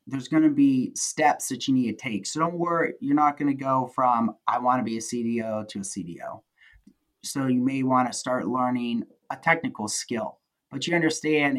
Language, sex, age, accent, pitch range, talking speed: English, male, 30-49, American, 125-155 Hz, 210 wpm